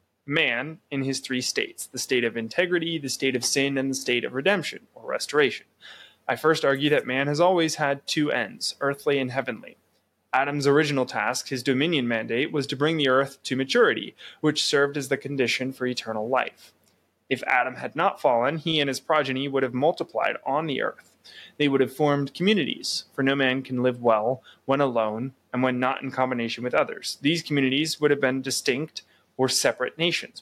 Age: 20-39